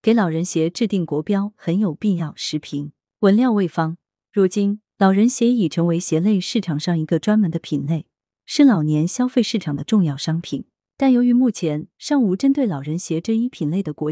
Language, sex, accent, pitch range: Chinese, female, native, 160-215 Hz